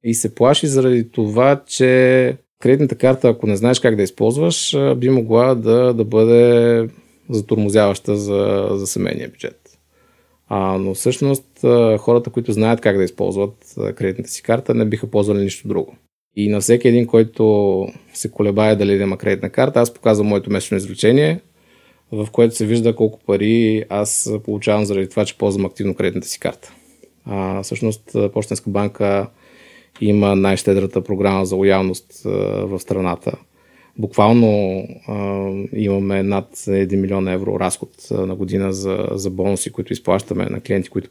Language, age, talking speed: Bulgarian, 20-39, 150 wpm